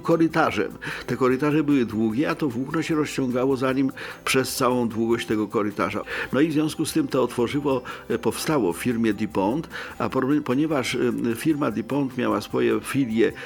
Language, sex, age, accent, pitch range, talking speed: Polish, male, 50-69, native, 110-150 Hz, 165 wpm